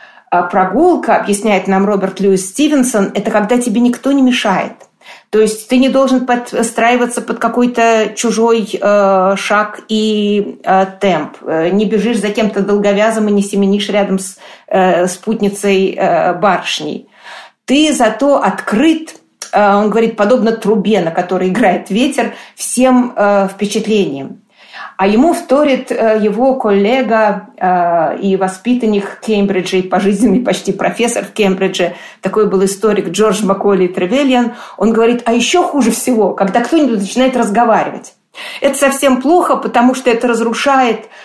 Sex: female